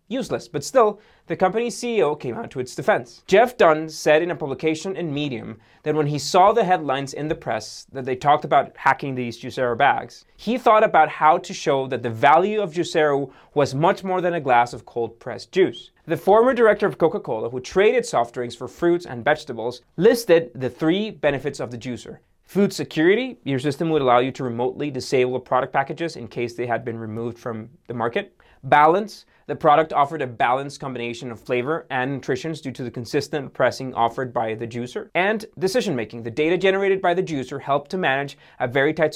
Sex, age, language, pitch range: male, 20-39, English, 125-175 Hz